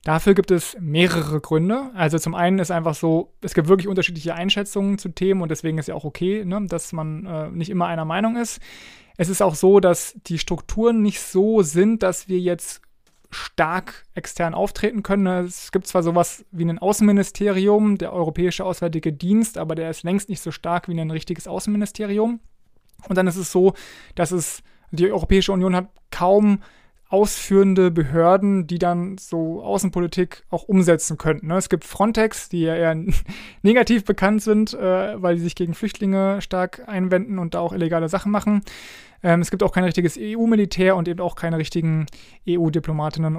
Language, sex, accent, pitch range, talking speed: German, male, German, 165-195 Hz, 175 wpm